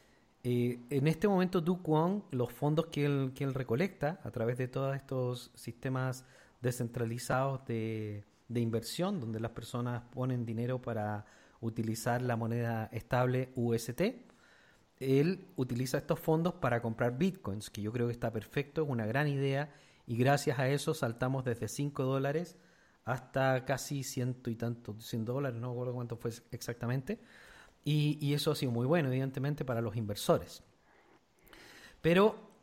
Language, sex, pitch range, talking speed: Spanish, male, 120-155 Hz, 155 wpm